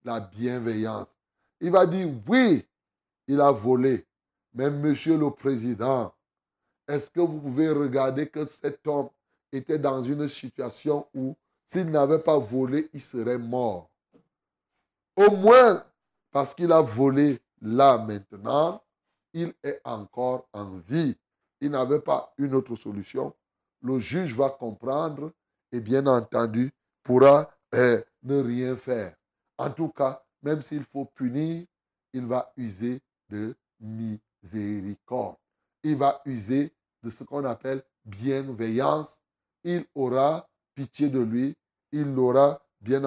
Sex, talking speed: male, 125 wpm